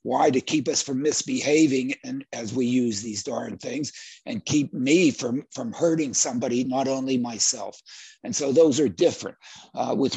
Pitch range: 125-150 Hz